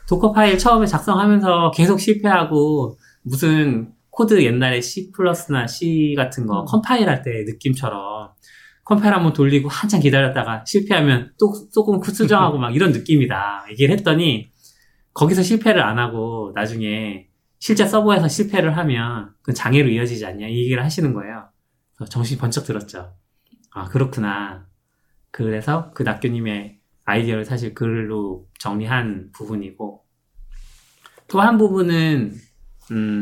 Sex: male